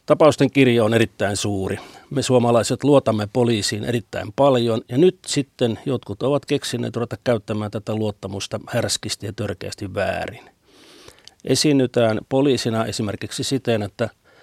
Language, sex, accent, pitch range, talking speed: Finnish, male, native, 105-125 Hz, 125 wpm